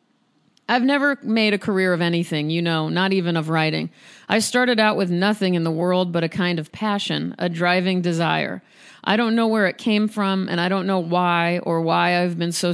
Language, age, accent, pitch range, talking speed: English, 40-59, American, 165-205 Hz, 215 wpm